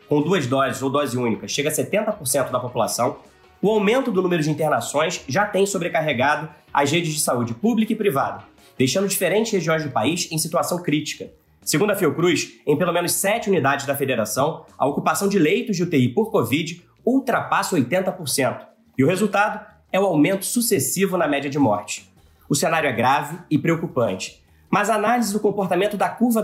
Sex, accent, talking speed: male, Brazilian, 180 wpm